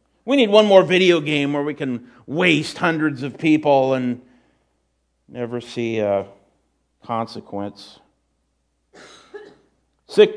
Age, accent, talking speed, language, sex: 50-69, American, 110 wpm, English, male